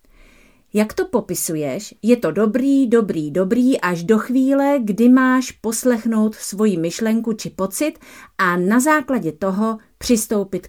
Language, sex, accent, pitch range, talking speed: Czech, female, native, 175-240 Hz, 130 wpm